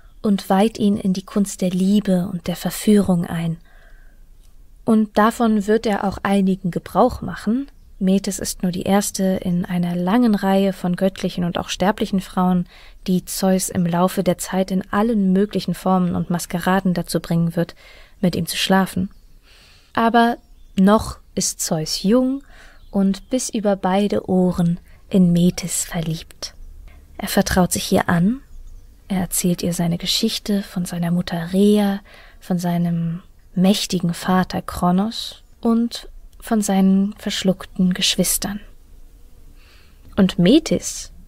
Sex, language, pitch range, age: female, German, 175-205 Hz, 20-39